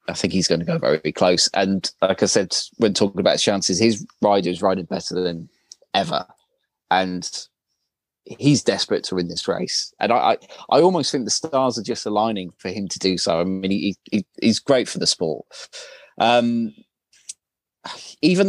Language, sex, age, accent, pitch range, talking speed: English, male, 30-49, British, 95-120 Hz, 190 wpm